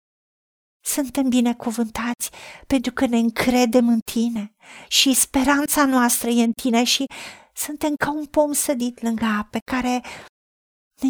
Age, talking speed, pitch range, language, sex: 50-69, 130 wpm, 220-275 Hz, Romanian, female